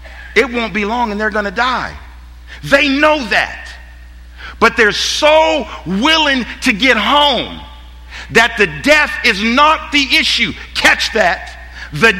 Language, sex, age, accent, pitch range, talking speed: English, male, 50-69, American, 180-275 Hz, 145 wpm